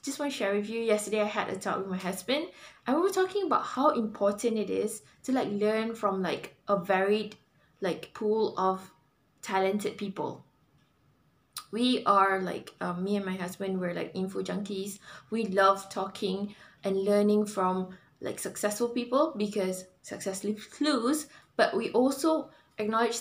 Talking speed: 165 wpm